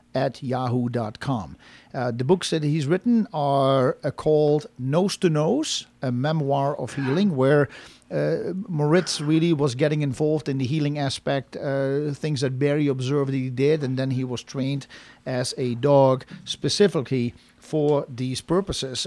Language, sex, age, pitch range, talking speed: English, male, 50-69, 130-160 Hz, 150 wpm